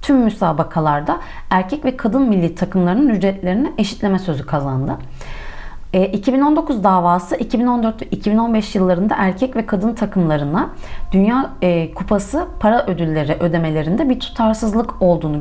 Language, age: Turkish, 30-49